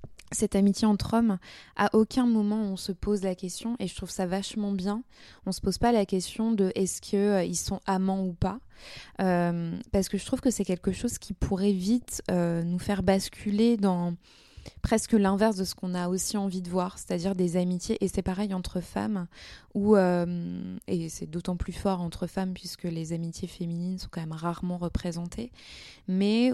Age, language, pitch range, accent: 20-39, French, 175-205 Hz, French